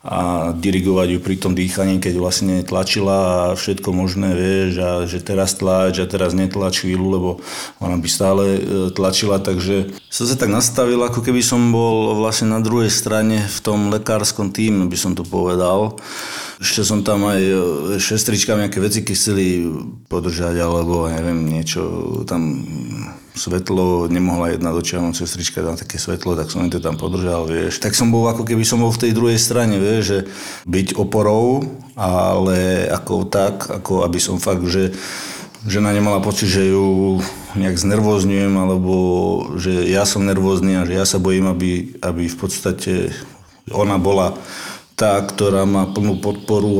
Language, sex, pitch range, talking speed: Slovak, male, 90-100 Hz, 165 wpm